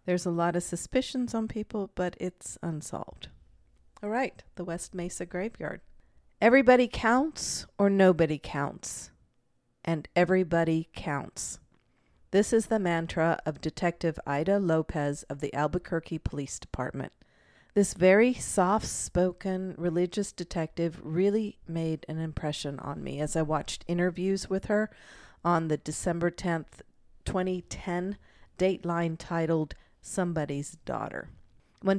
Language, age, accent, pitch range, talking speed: English, 50-69, American, 155-185 Hz, 120 wpm